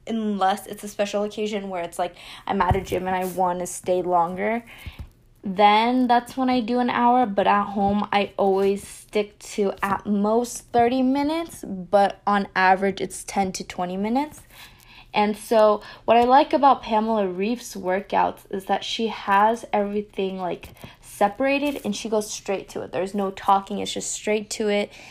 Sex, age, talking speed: female, 10-29, 175 wpm